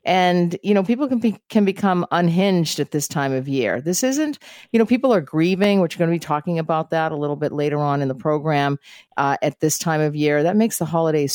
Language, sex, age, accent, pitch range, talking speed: English, female, 50-69, American, 150-215 Hz, 250 wpm